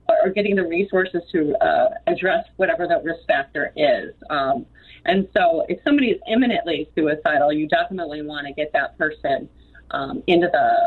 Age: 40-59